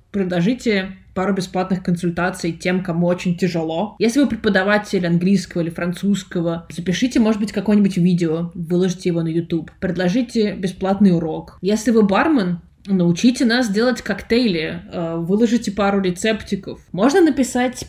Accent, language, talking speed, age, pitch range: native, Russian, 125 wpm, 20-39, 180-225 Hz